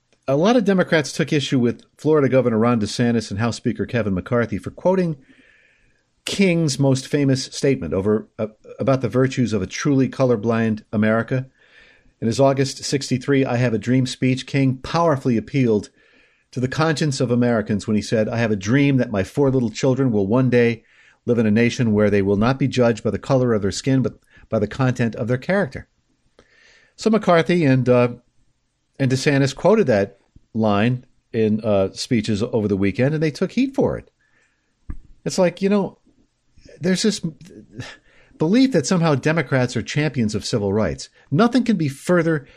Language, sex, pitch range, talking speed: English, male, 115-155 Hz, 180 wpm